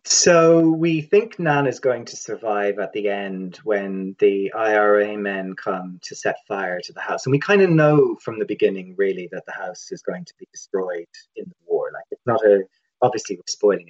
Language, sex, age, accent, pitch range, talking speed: English, male, 30-49, British, 100-165 Hz, 210 wpm